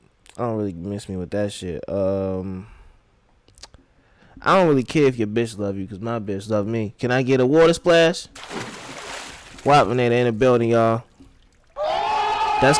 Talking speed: 160 wpm